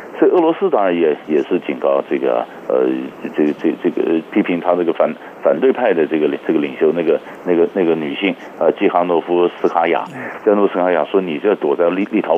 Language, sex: Chinese, male